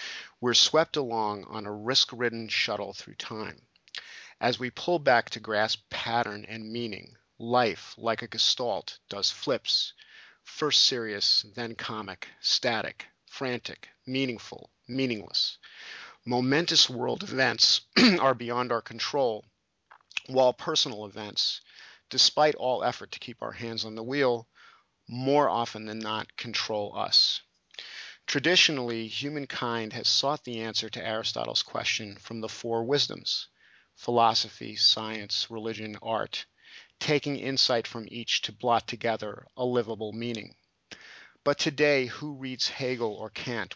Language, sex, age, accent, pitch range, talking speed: English, male, 40-59, American, 110-130 Hz, 125 wpm